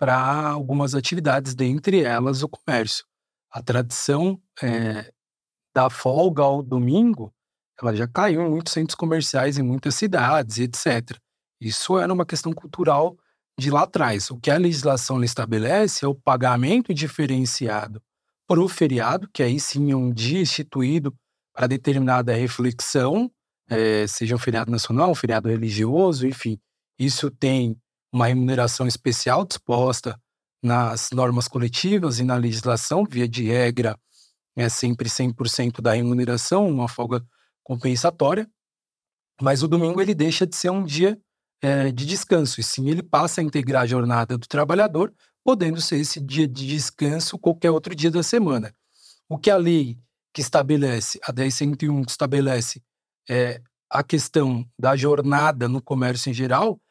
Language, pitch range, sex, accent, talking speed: Portuguese, 120-160 Hz, male, Brazilian, 150 wpm